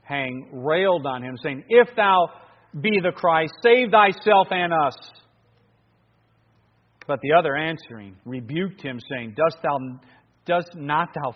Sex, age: male, 40-59